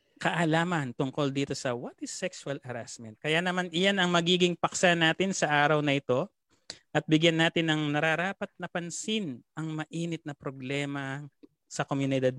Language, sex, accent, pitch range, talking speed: Filipino, male, native, 130-175 Hz, 155 wpm